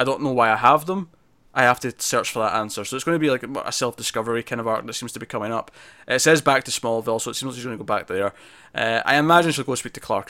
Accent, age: British, 20-39